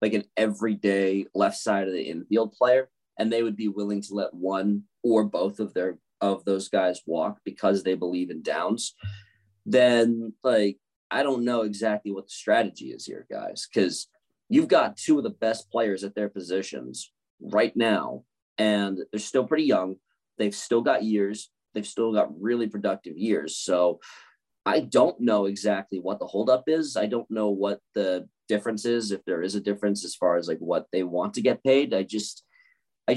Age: 30-49